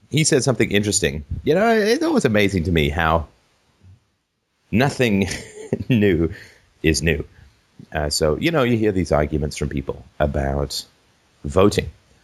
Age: 40-59